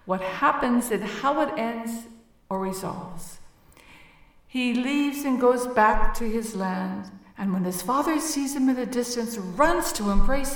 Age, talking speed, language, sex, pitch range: 60-79, 160 wpm, English, female, 200-275 Hz